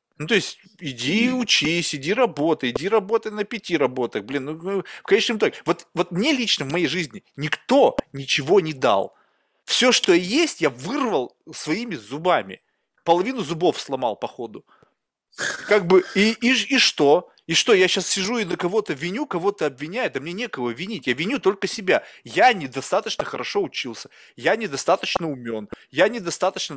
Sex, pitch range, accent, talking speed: male, 140-210 Hz, native, 170 wpm